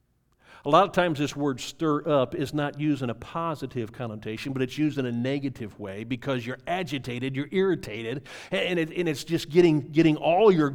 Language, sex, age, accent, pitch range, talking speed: English, male, 50-69, American, 120-165 Hz, 195 wpm